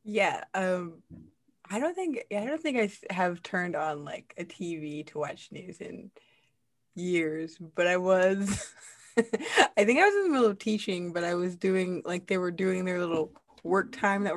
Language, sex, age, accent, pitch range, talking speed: English, female, 20-39, American, 175-230 Hz, 190 wpm